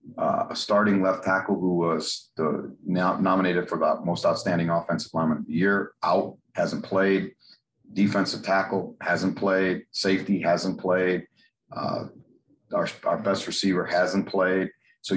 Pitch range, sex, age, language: 90-105 Hz, male, 40-59, English